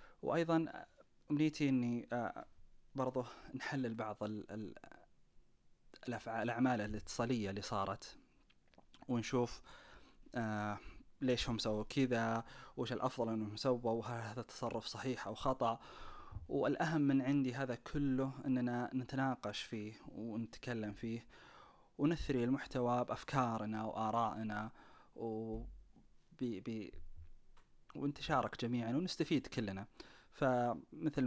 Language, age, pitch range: Arabic, 20-39, 110-130 Hz